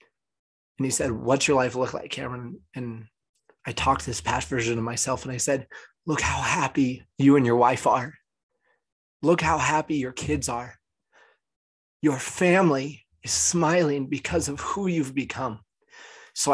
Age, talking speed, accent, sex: 30-49, 165 wpm, American, male